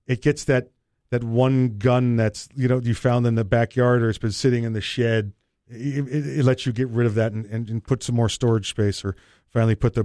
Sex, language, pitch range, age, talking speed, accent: male, English, 115-145 Hz, 40-59, 250 wpm, American